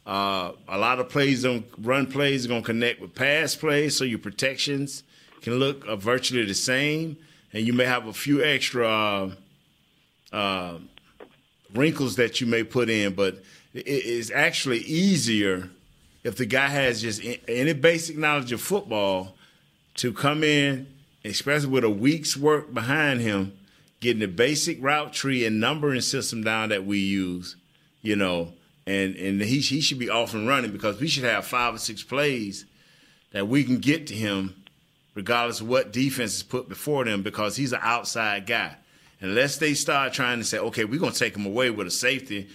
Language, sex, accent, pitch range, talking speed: English, male, American, 105-140 Hz, 185 wpm